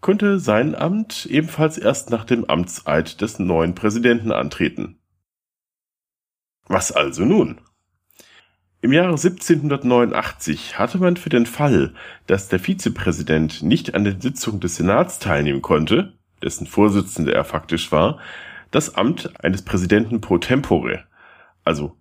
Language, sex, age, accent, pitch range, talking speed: German, male, 40-59, German, 90-130 Hz, 125 wpm